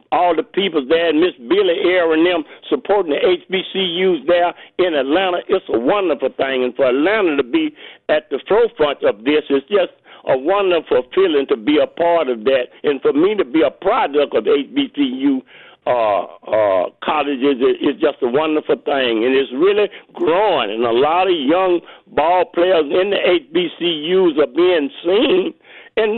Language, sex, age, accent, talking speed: English, male, 60-79, American, 175 wpm